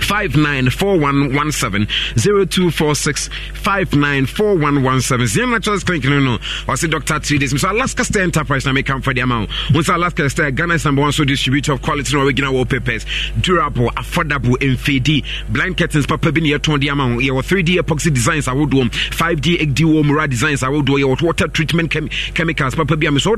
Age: 30-49